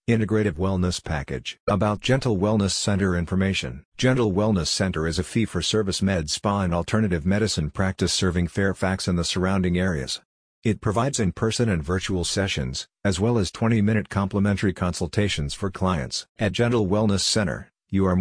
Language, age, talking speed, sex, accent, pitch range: English, 50-69, 165 wpm, male, American, 90-105 Hz